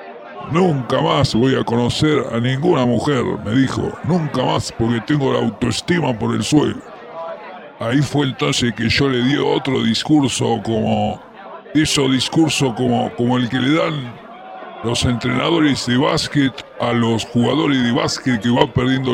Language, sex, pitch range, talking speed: English, female, 120-145 Hz, 155 wpm